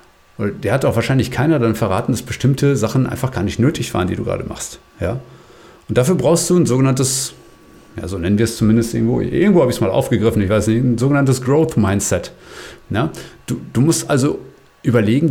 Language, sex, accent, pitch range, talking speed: German, male, German, 110-140 Hz, 210 wpm